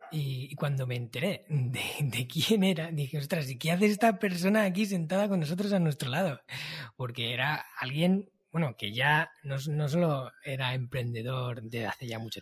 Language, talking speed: Spanish, 180 wpm